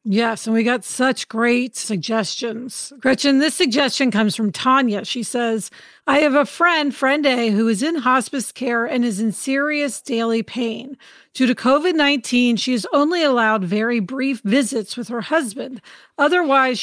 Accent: American